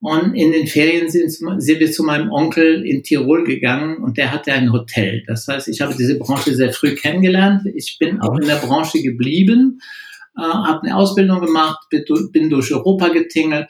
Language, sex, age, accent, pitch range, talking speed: German, male, 60-79, German, 120-160 Hz, 185 wpm